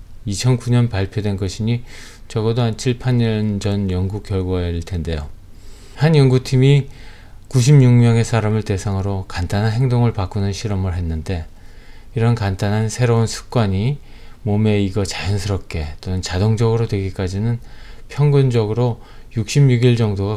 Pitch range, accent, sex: 95-120 Hz, native, male